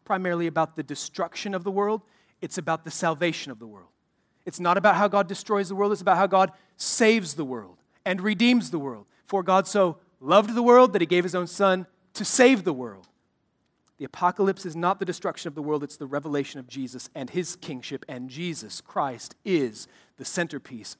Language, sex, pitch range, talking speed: English, male, 140-190 Hz, 205 wpm